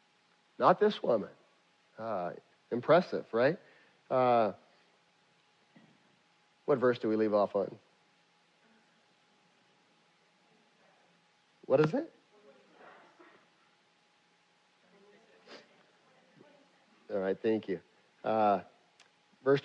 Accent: American